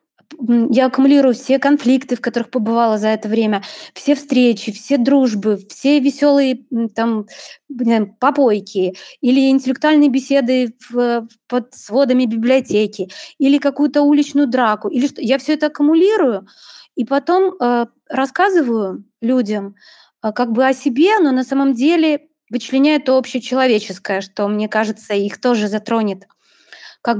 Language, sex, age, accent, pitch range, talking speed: Russian, female, 20-39, native, 220-270 Hz, 130 wpm